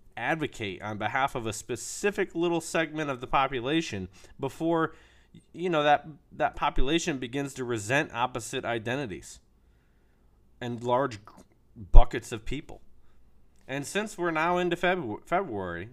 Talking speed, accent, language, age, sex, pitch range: 125 wpm, American, English, 30-49, male, 95-135 Hz